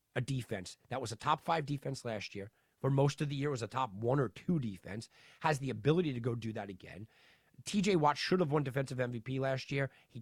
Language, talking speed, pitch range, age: English, 235 wpm, 125-165 Hz, 40-59